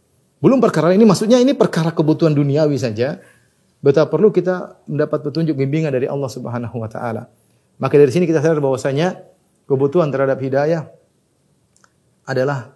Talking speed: 140 wpm